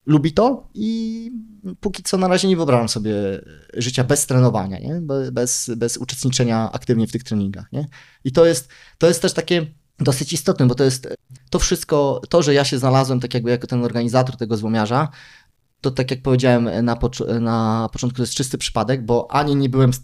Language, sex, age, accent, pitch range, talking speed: Polish, male, 20-39, native, 120-155 Hz, 180 wpm